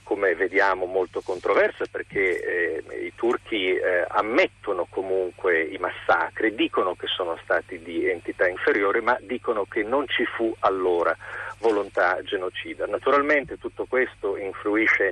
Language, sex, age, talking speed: Italian, male, 40-59, 130 wpm